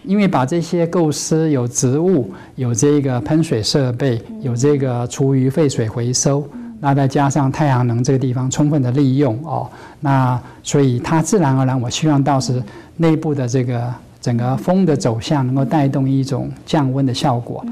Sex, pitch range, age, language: male, 125-150 Hz, 50-69, English